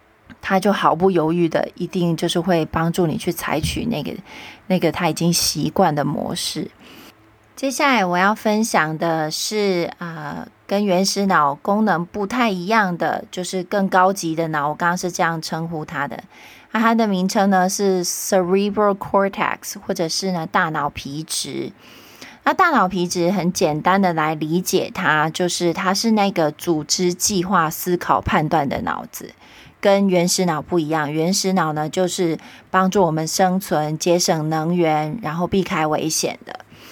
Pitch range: 170-200 Hz